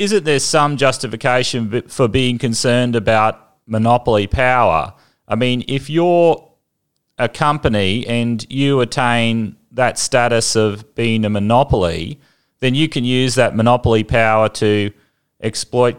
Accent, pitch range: Australian, 115-135 Hz